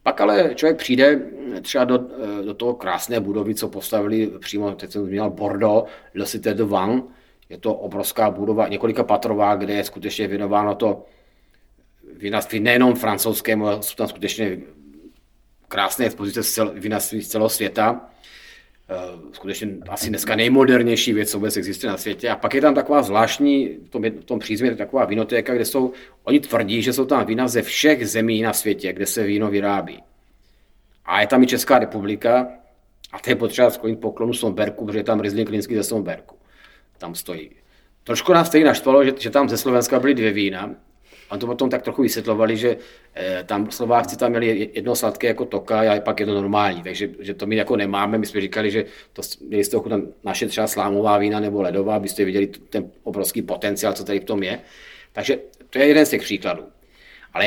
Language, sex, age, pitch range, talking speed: Czech, male, 40-59, 100-120 Hz, 180 wpm